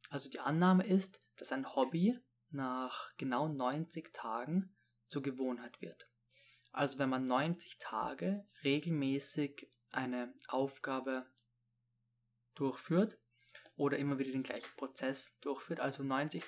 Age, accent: 20-39, German